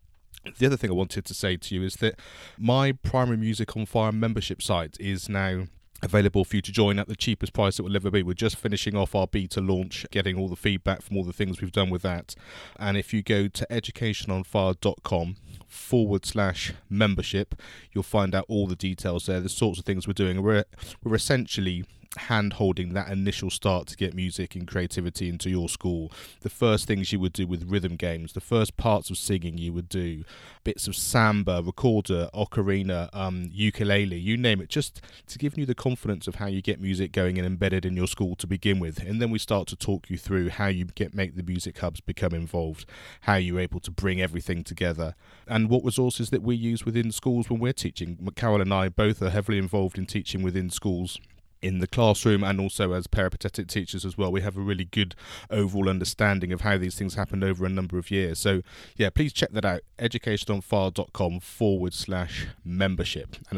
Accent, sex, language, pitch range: British, male, English, 90-105 Hz